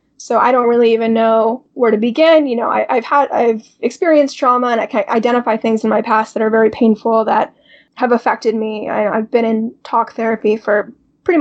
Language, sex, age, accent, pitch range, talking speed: English, female, 10-29, American, 225-260 Hz, 215 wpm